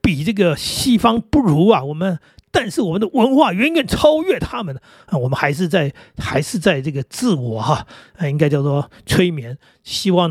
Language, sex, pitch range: Chinese, male, 145-190 Hz